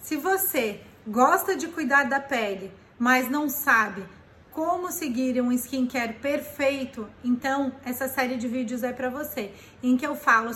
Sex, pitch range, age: female, 255-300 Hz, 30-49